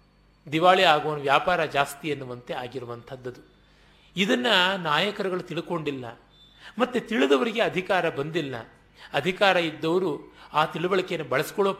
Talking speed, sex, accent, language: 90 wpm, male, native, Kannada